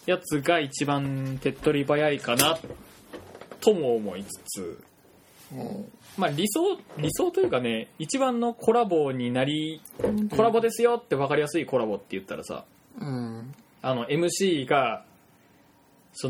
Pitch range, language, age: 120-180 Hz, Japanese, 20-39